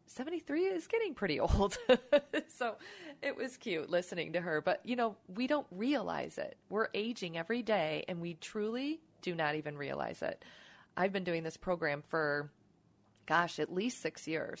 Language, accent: English, American